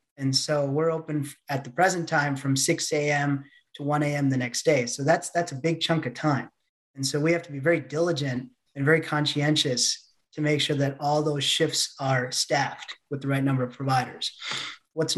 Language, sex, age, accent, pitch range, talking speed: English, male, 30-49, American, 145-165 Hz, 205 wpm